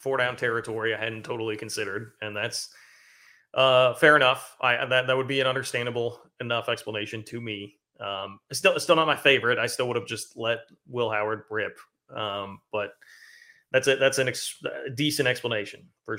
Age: 30-49